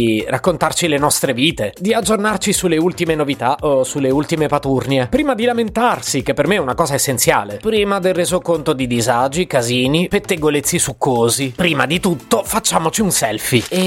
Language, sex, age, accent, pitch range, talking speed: Italian, male, 30-49, native, 135-190 Hz, 160 wpm